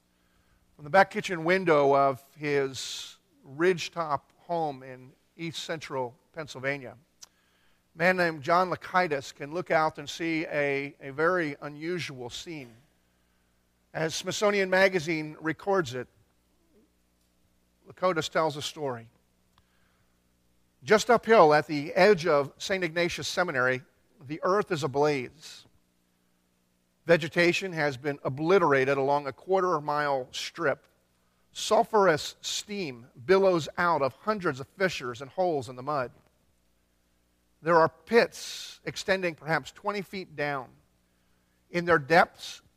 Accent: American